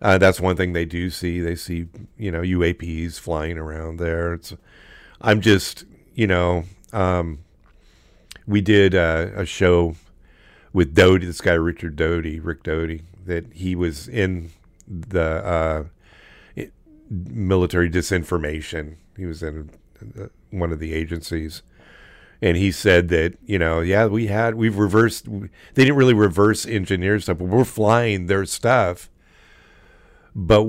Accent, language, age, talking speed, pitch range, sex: American, English, 50-69, 145 wpm, 85-100 Hz, male